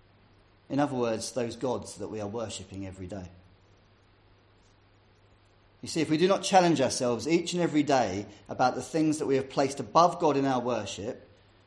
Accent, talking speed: British, 180 wpm